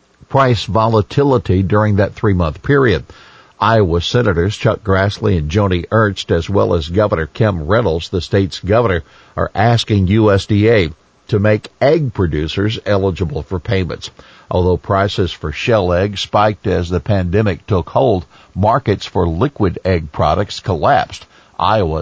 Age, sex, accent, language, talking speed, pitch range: 50-69, male, American, English, 135 wpm, 90-110 Hz